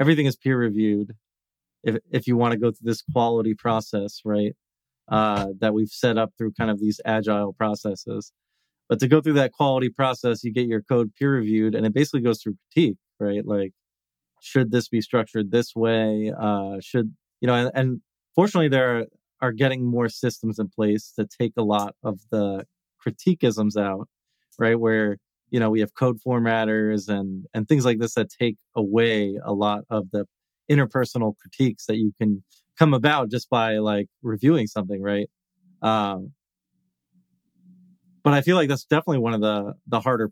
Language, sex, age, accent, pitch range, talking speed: English, male, 30-49, American, 105-130 Hz, 180 wpm